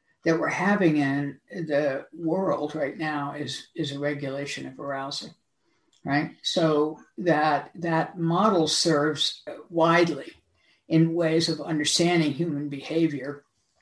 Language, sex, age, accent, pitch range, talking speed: English, female, 60-79, American, 145-170 Hz, 115 wpm